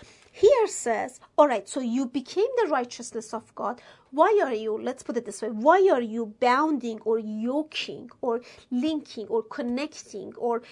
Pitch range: 245-335 Hz